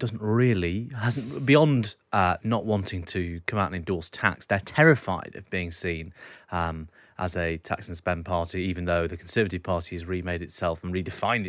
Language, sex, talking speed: English, male, 185 wpm